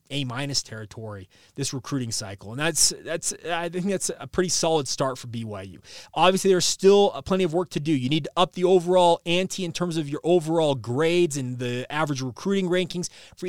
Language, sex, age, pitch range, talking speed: English, male, 30-49, 140-180 Hz, 195 wpm